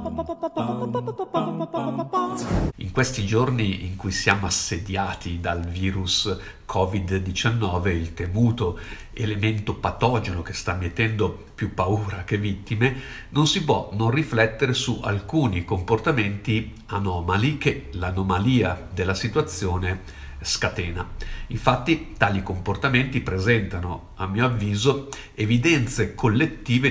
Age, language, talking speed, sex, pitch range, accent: 50-69, Italian, 100 wpm, male, 95-125 Hz, native